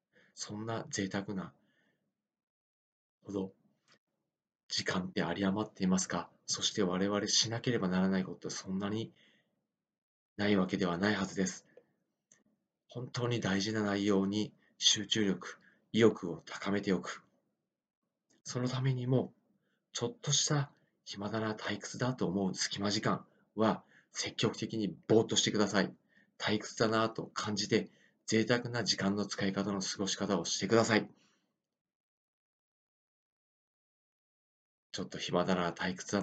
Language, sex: Japanese, male